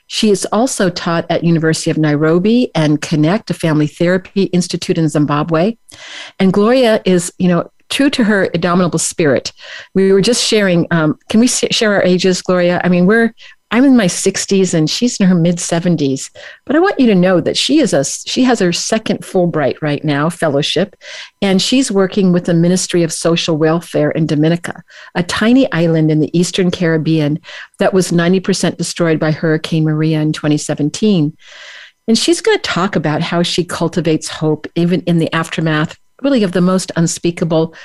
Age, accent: 50-69, American